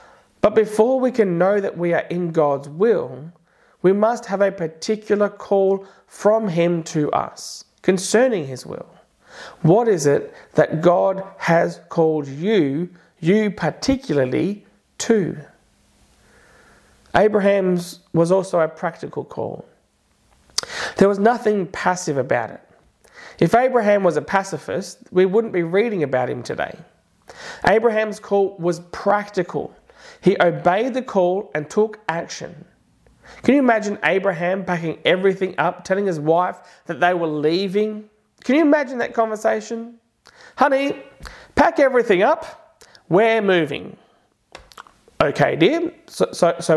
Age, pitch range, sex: 30-49, 170-225 Hz, male